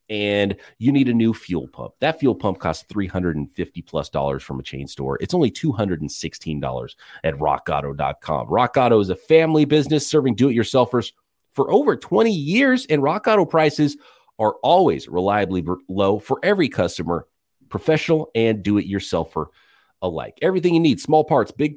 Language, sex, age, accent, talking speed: English, male, 30-49, American, 150 wpm